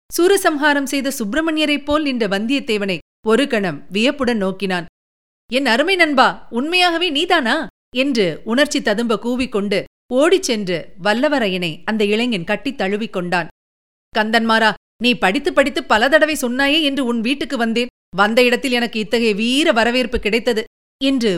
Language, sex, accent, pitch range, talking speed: Tamil, female, native, 205-280 Hz, 125 wpm